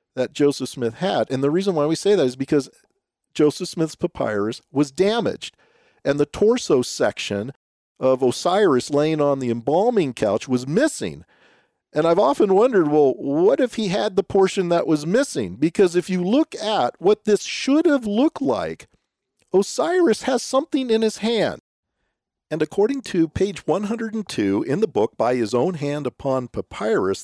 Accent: American